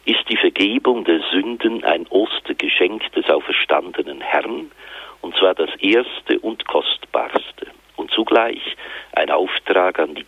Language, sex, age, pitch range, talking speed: German, male, 50-69, 340-420 Hz, 130 wpm